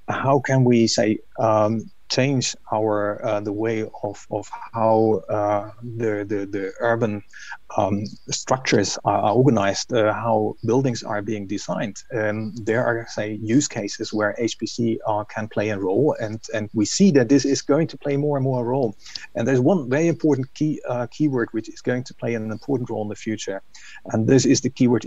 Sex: male